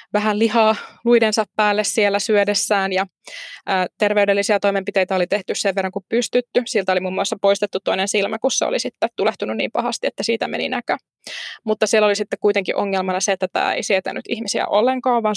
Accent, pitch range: native, 195-220 Hz